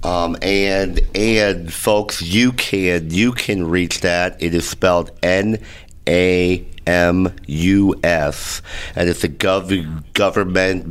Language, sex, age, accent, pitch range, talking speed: English, male, 50-69, American, 85-100 Hz, 125 wpm